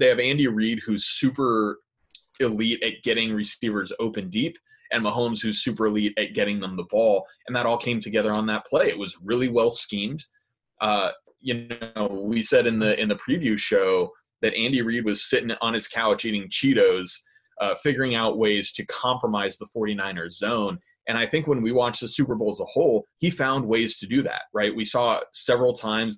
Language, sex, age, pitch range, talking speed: English, male, 20-39, 105-140 Hz, 200 wpm